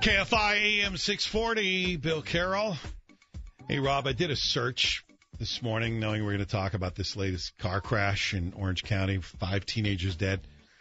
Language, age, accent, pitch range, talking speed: English, 50-69, American, 105-170 Hz, 160 wpm